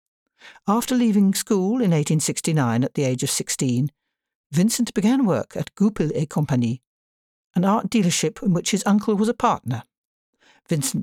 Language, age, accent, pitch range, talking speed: English, 60-79, British, 155-215 Hz, 150 wpm